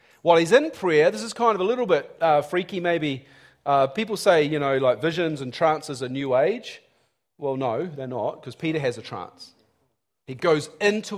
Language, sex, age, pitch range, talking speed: English, male, 40-59, 135-185 Hz, 205 wpm